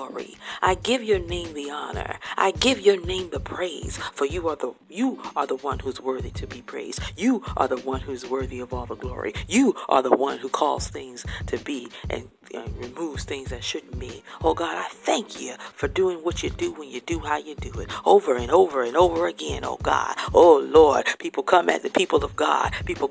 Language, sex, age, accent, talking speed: English, female, 40-59, American, 225 wpm